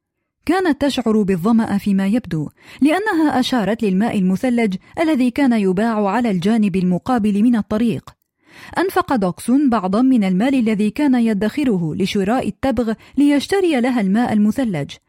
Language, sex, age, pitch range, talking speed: Arabic, female, 30-49, 200-255 Hz, 125 wpm